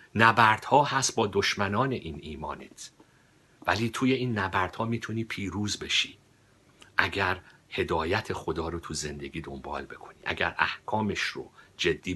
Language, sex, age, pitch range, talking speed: Persian, male, 50-69, 85-110 Hz, 125 wpm